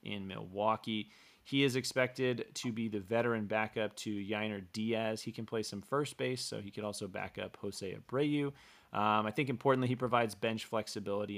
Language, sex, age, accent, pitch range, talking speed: English, male, 30-49, American, 100-115 Hz, 185 wpm